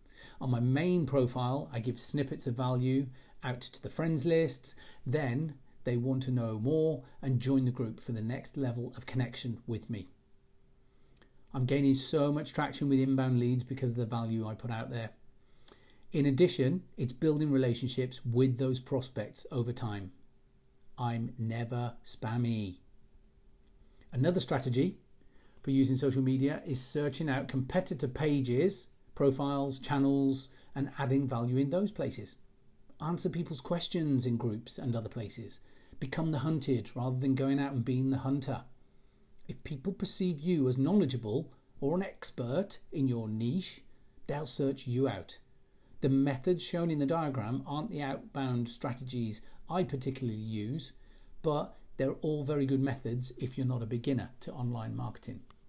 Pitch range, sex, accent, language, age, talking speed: 120-140 Hz, male, British, English, 40-59, 155 wpm